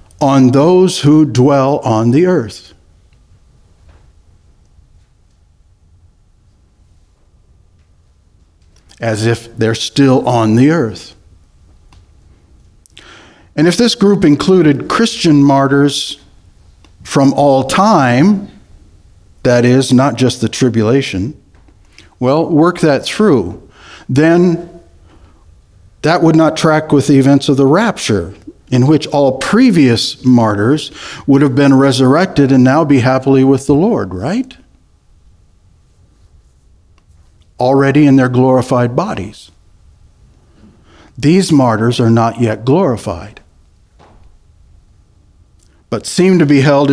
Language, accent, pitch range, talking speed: English, American, 90-140 Hz, 100 wpm